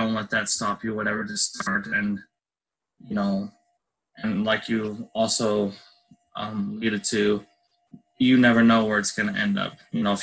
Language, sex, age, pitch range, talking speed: English, male, 20-39, 105-120 Hz, 175 wpm